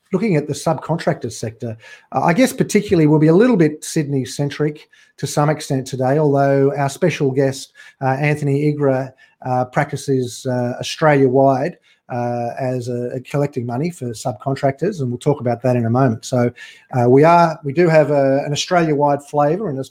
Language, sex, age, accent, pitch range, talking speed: English, male, 40-59, Australian, 130-150 Hz, 155 wpm